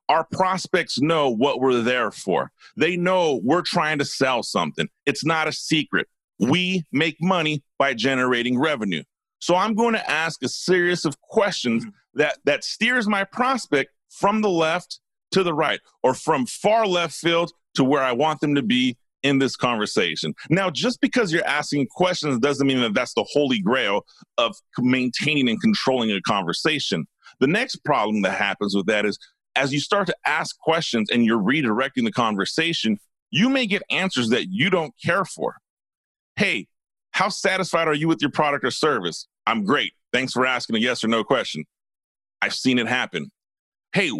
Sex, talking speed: male, 180 wpm